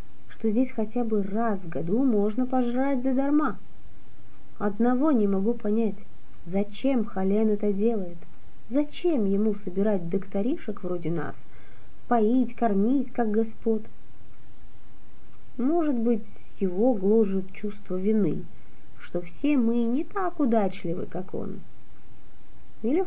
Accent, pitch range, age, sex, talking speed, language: native, 165-245 Hz, 30-49, female, 110 wpm, Russian